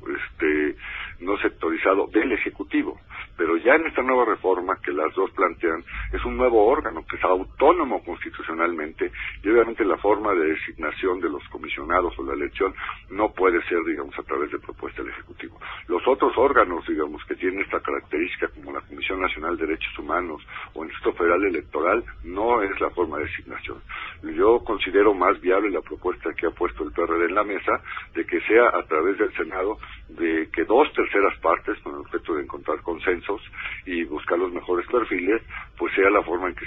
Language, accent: Spanish, Mexican